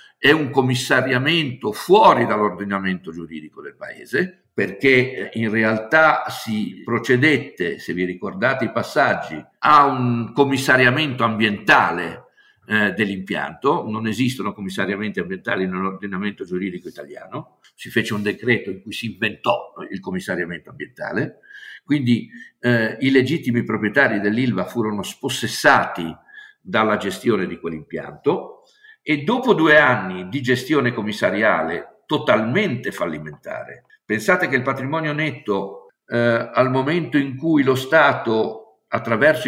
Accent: native